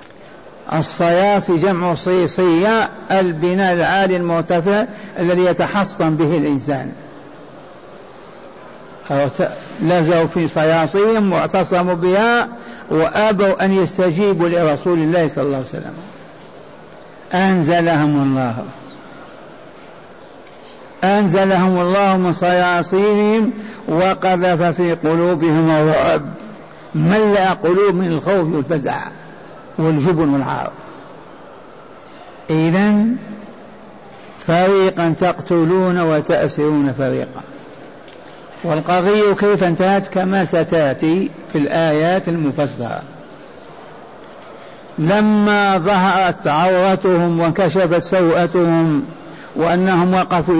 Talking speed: 70 wpm